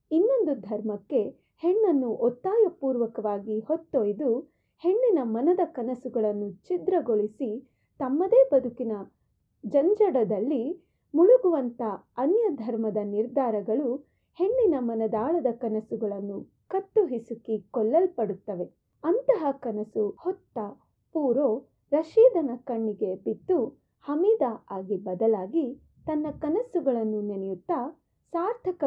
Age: 30-49